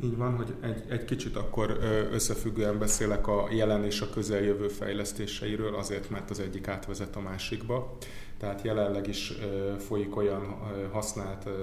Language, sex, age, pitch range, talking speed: Hungarian, male, 30-49, 100-105 Hz, 145 wpm